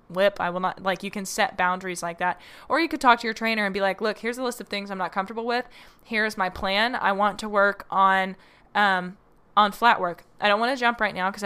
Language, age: English, 10-29